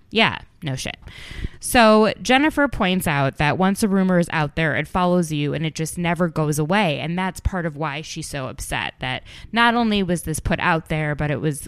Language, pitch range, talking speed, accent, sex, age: English, 150-190 Hz, 215 wpm, American, female, 20-39